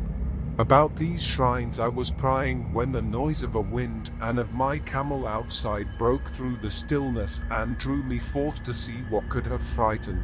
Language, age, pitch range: English, 40-59, 85-130 Hz